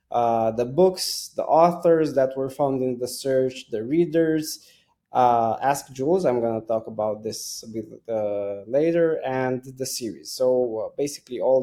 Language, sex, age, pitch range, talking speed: English, male, 20-39, 115-140 Hz, 165 wpm